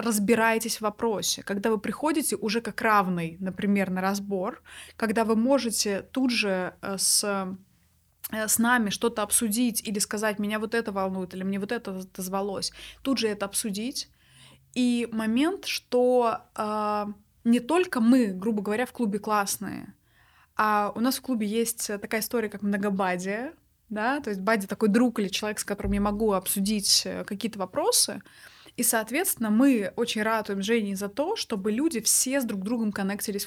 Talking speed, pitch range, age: 160 wpm, 205-245 Hz, 20-39